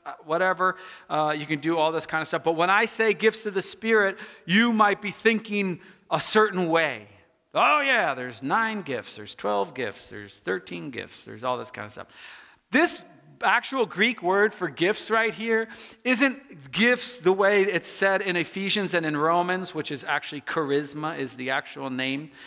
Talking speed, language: 185 wpm, English